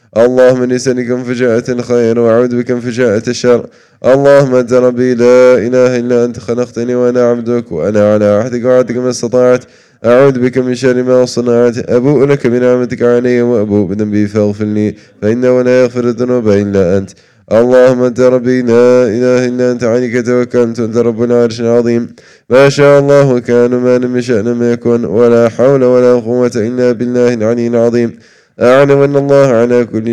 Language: English